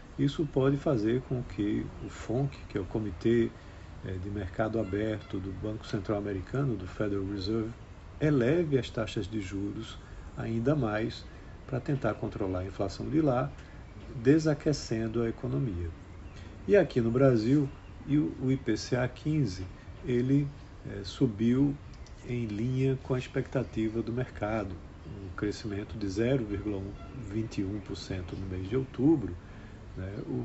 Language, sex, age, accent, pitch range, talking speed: Portuguese, male, 50-69, Brazilian, 100-135 Hz, 125 wpm